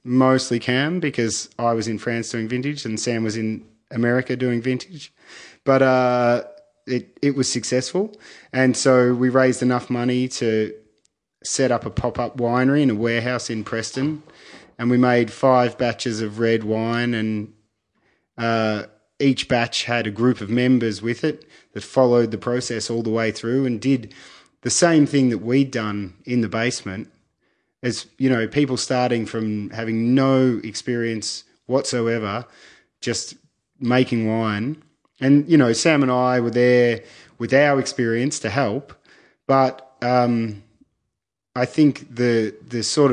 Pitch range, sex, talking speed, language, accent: 110-130 Hz, male, 155 wpm, English, Australian